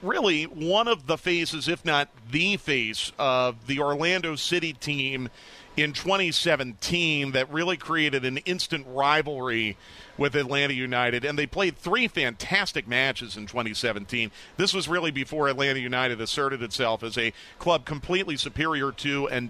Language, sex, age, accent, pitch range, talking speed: English, male, 40-59, American, 135-185 Hz, 150 wpm